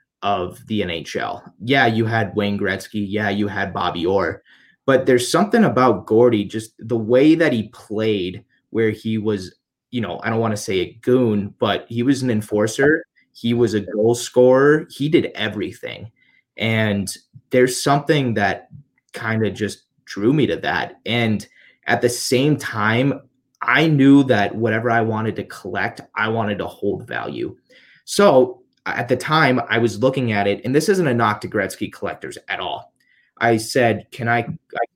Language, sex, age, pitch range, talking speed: English, male, 20-39, 105-125 Hz, 175 wpm